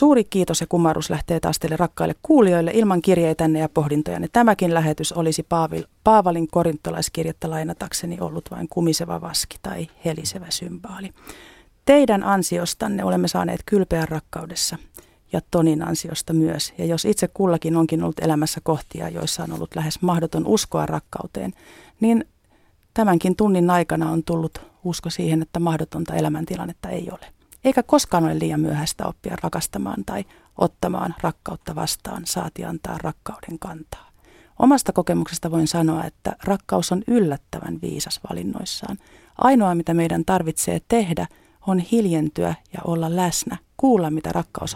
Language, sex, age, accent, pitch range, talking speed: Finnish, female, 40-59, native, 160-195 Hz, 140 wpm